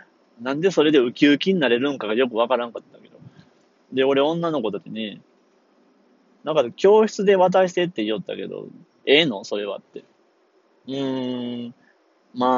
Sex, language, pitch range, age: male, Japanese, 115-160 Hz, 30-49